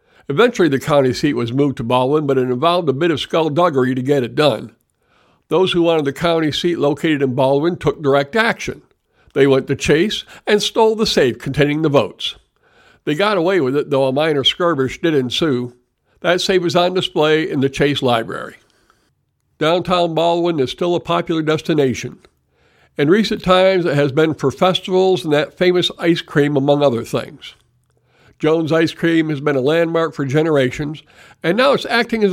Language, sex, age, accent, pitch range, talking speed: English, male, 60-79, American, 140-175 Hz, 185 wpm